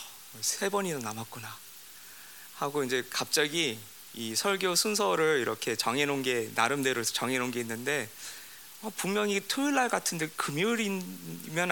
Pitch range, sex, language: 115-185 Hz, male, Korean